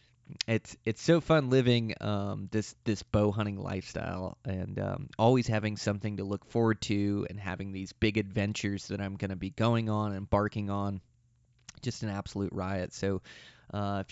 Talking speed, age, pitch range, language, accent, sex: 180 wpm, 20-39, 100-115 Hz, English, American, male